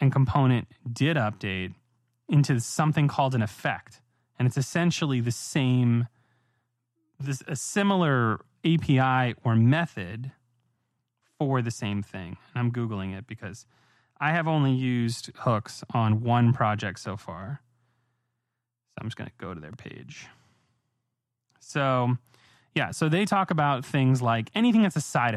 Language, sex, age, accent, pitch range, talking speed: English, male, 20-39, American, 115-140 Hz, 140 wpm